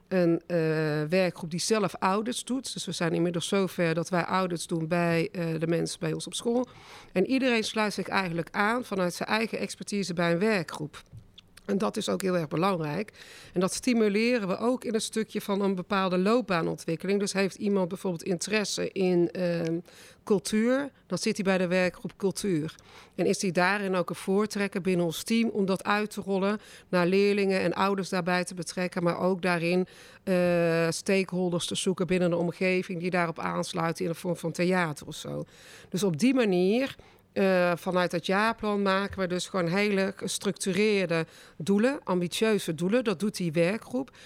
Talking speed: 180 wpm